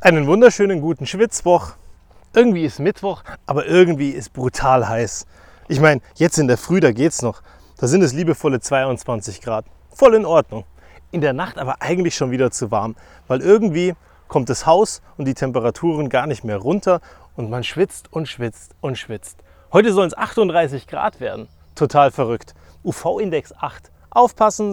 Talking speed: 165 wpm